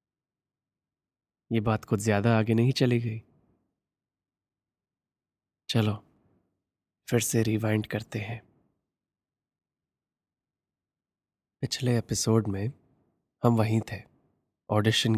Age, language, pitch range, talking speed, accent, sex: 20-39, Hindi, 105-120 Hz, 85 wpm, native, male